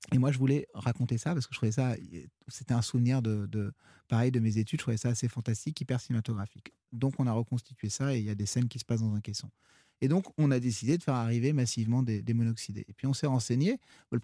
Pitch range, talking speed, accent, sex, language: 115-140 Hz, 260 wpm, French, male, French